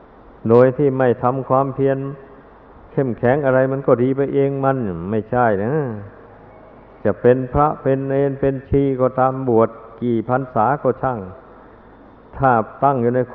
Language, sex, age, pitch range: Thai, male, 60-79, 115-135 Hz